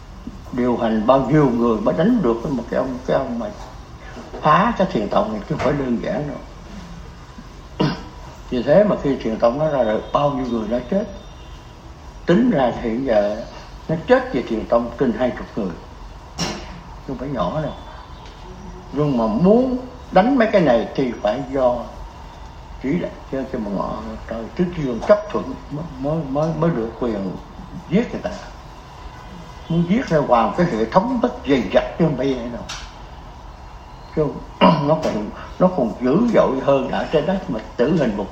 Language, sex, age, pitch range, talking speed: Vietnamese, male, 60-79, 110-165 Hz, 170 wpm